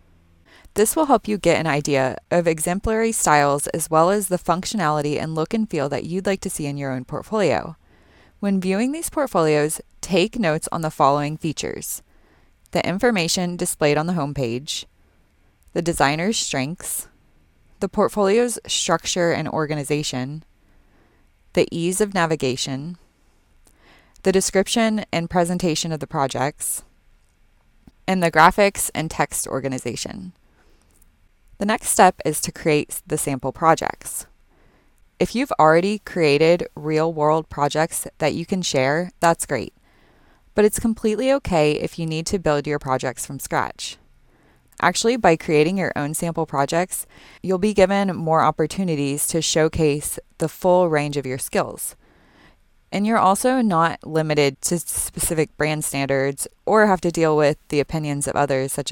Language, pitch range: English, 140-180 Hz